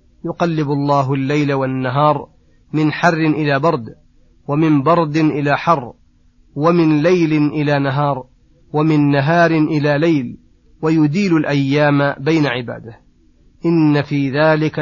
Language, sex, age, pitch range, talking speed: Arabic, male, 30-49, 135-155 Hz, 110 wpm